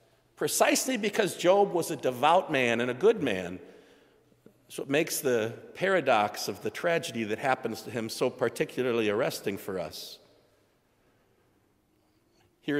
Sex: male